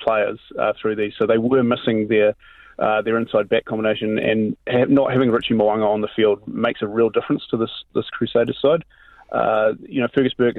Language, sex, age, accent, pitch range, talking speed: English, male, 30-49, Australian, 110-130 Hz, 210 wpm